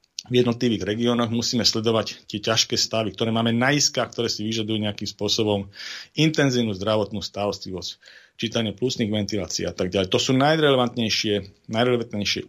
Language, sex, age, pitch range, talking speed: Slovak, male, 40-59, 100-115 Hz, 145 wpm